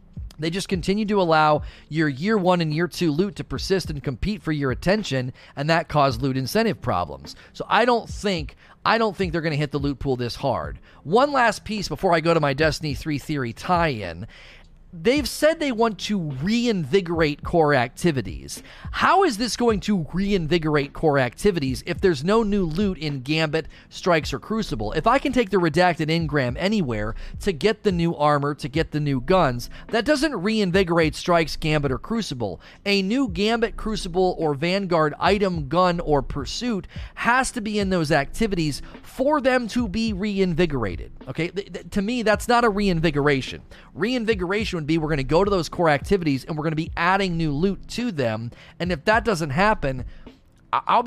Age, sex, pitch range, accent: 30-49, male, 150-205 Hz, American